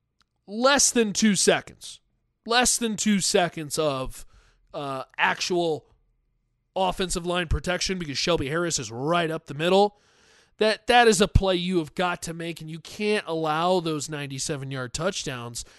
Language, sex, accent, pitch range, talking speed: English, male, American, 160-235 Hz, 150 wpm